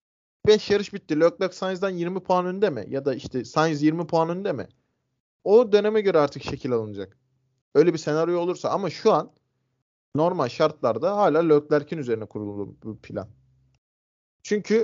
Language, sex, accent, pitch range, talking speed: Turkish, male, native, 130-185 Hz, 160 wpm